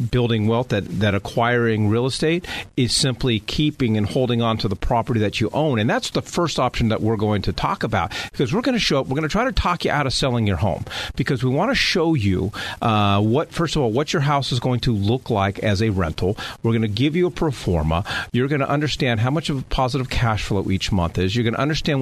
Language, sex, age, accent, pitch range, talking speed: English, male, 50-69, American, 105-140 Hz, 260 wpm